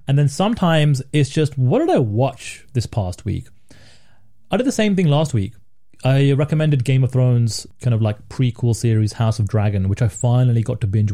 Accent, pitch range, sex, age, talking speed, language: British, 110-140 Hz, male, 30-49, 205 wpm, English